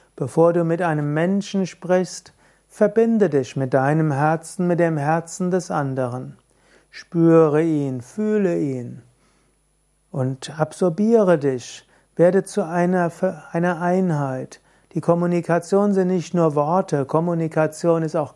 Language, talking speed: German, 120 wpm